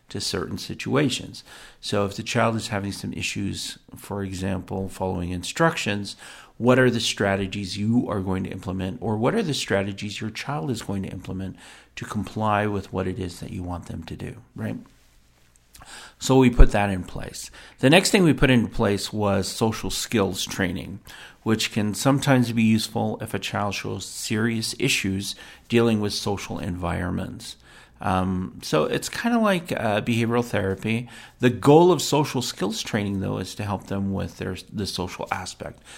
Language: English